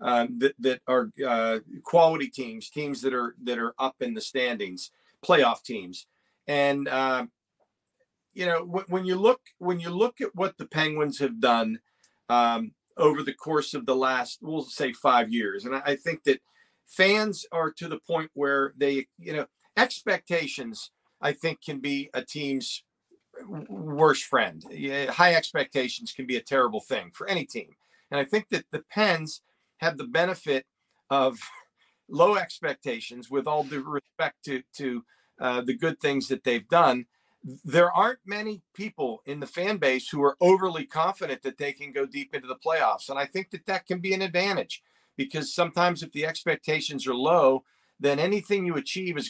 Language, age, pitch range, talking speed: English, 40-59, 130-170 Hz, 175 wpm